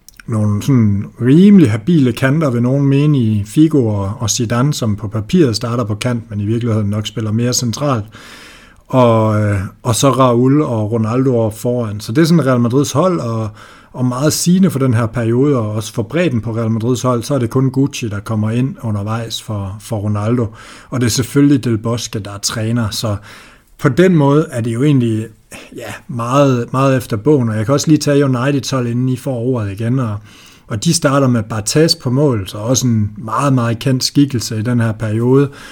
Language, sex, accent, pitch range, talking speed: Danish, male, native, 110-135 Hz, 200 wpm